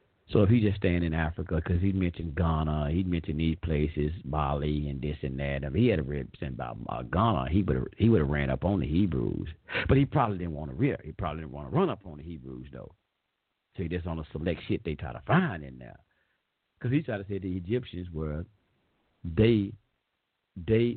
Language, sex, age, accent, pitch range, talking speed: English, male, 50-69, American, 80-110 Hz, 225 wpm